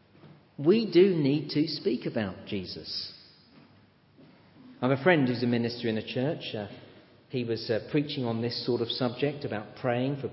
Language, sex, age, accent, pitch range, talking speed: English, male, 40-59, British, 125-175 Hz, 170 wpm